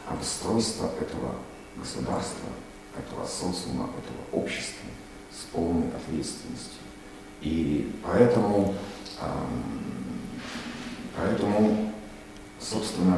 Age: 50-69